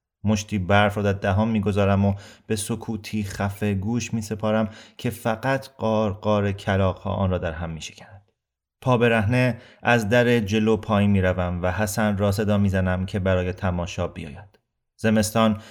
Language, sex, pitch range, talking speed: Persian, male, 95-115 Hz, 140 wpm